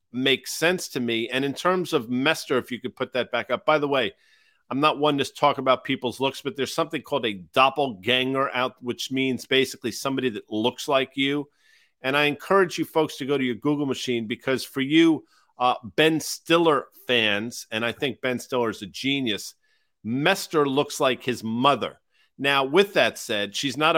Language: English